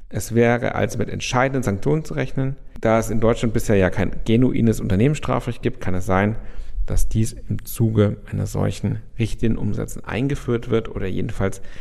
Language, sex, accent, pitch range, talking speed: German, male, German, 105-125 Hz, 170 wpm